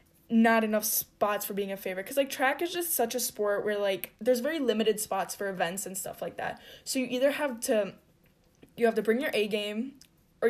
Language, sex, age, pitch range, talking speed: English, female, 10-29, 210-245 Hz, 225 wpm